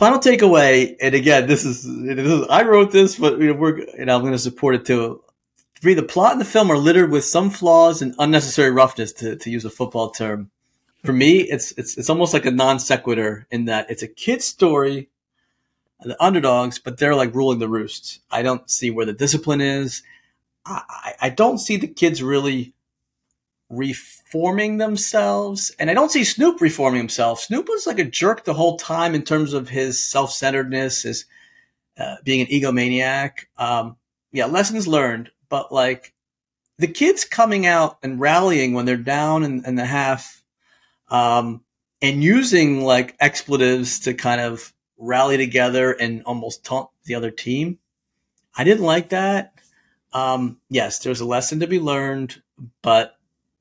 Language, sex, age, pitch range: English, male, 40-59, 125-165 Hz